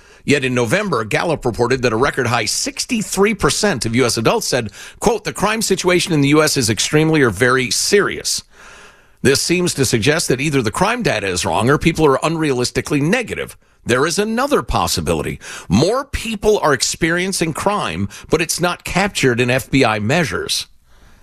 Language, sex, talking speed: English, male, 165 wpm